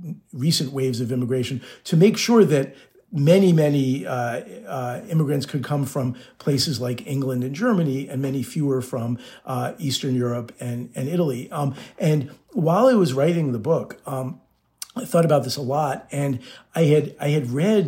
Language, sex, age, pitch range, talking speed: English, male, 50-69, 125-160 Hz, 170 wpm